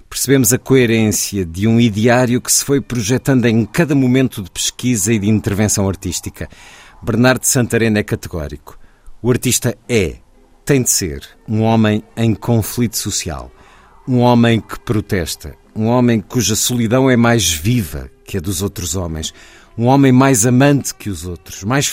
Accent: Portuguese